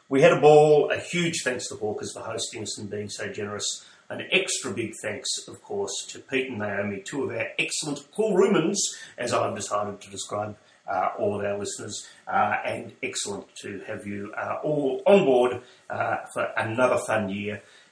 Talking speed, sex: 195 wpm, male